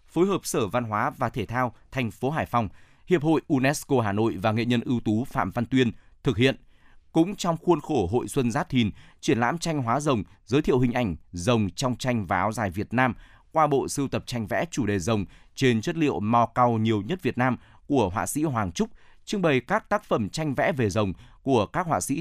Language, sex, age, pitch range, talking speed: Vietnamese, male, 20-39, 110-140 Hz, 240 wpm